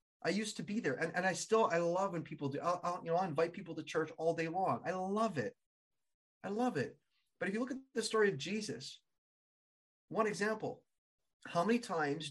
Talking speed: 215 wpm